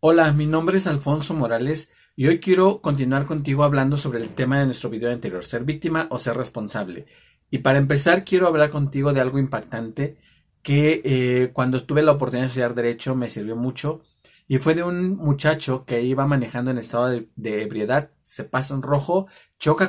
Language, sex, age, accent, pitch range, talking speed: Spanish, male, 40-59, Mexican, 120-150 Hz, 190 wpm